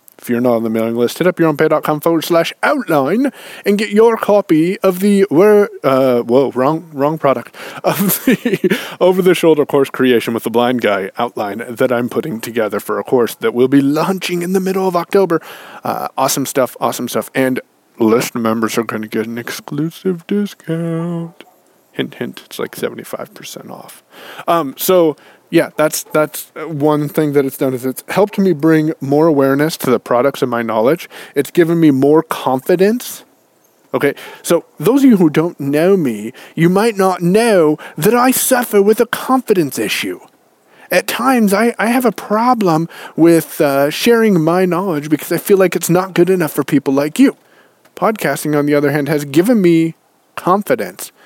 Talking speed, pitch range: 180 wpm, 140-190 Hz